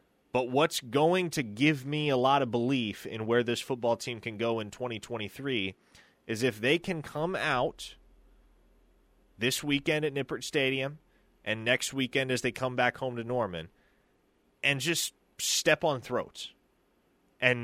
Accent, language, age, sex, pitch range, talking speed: American, English, 30-49, male, 115-140 Hz, 155 wpm